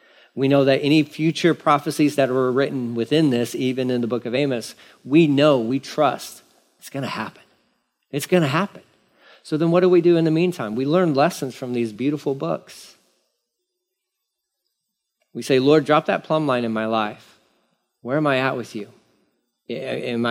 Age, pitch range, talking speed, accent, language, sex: 40-59, 120-160 Hz, 185 wpm, American, English, male